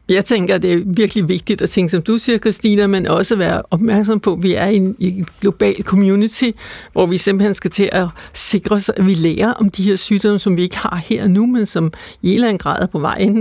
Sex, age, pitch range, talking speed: female, 60-79, 185-210 Hz, 240 wpm